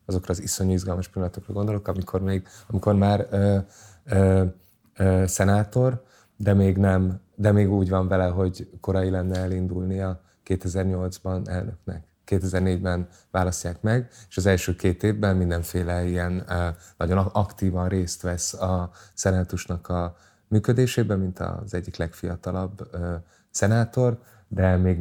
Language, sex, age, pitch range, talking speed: Hungarian, male, 20-39, 90-95 Hz, 135 wpm